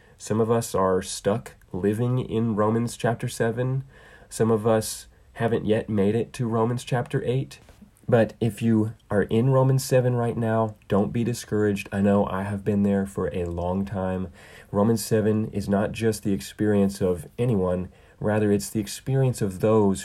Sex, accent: male, American